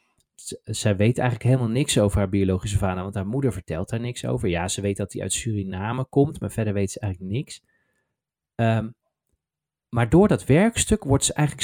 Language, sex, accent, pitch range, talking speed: Dutch, male, Dutch, 105-150 Hz, 200 wpm